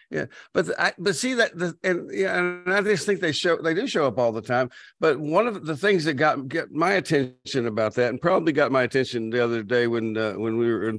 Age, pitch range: 60-79, 115-140 Hz